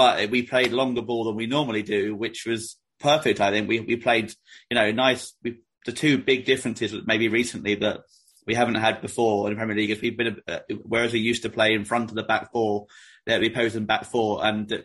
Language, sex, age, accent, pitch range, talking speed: English, male, 30-49, British, 110-120 Hz, 235 wpm